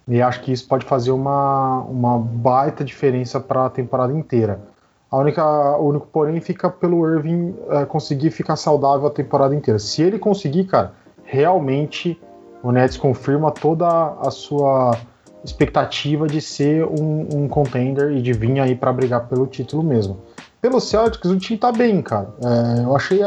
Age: 20-39